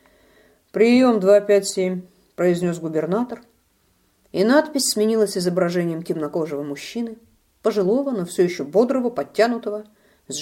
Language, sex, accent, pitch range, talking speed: Russian, female, native, 150-220 Hz, 105 wpm